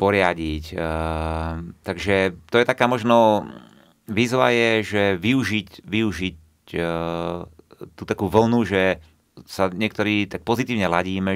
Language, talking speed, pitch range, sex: Slovak, 110 wpm, 85-105 Hz, male